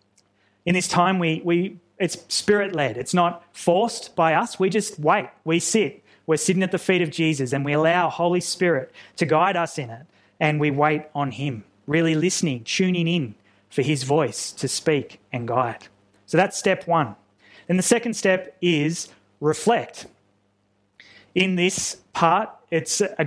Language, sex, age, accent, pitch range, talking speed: English, male, 20-39, Australian, 145-175 Hz, 170 wpm